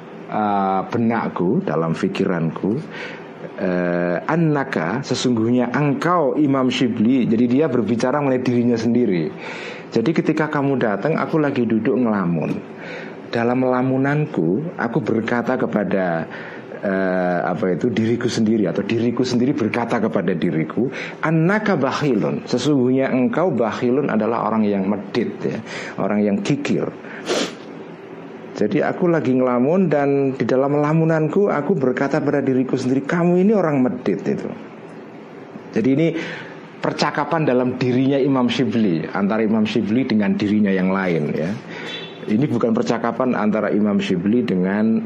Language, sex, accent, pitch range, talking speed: Indonesian, male, native, 110-145 Hz, 125 wpm